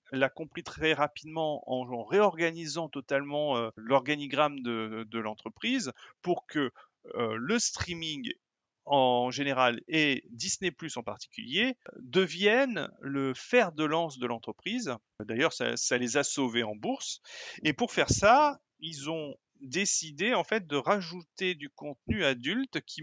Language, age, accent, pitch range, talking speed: French, 40-59, French, 120-165 Hz, 145 wpm